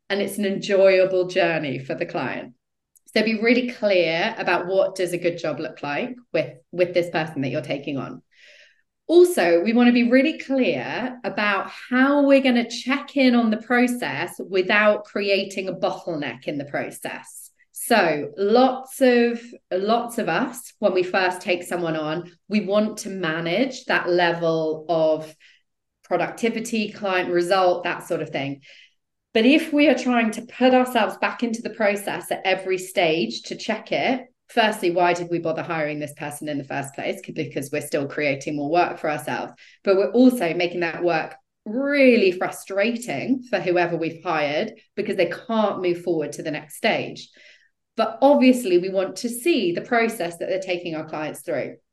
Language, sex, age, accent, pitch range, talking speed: English, female, 30-49, British, 170-235 Hz, 175 wpm